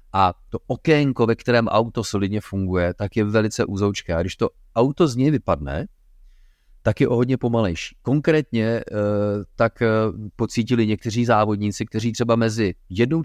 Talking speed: 150 wpm